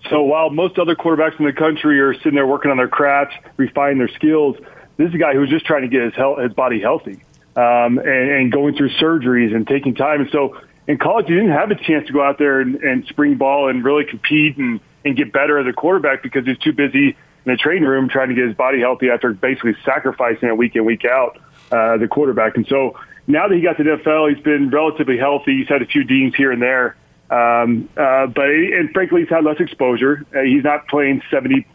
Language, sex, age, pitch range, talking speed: English, male, 30-49, 125-150 Hz, 245 wpm